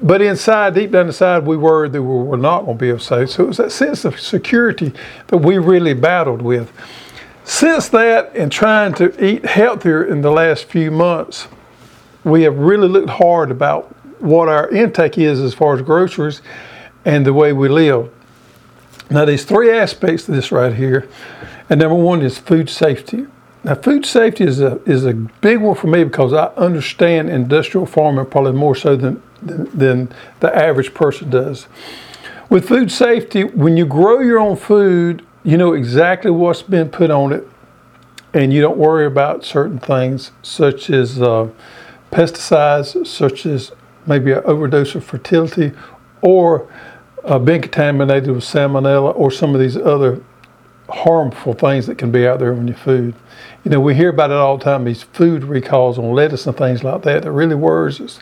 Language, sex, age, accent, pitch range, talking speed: English, male, 50-69, American, 135-175 Hz, 180 wpm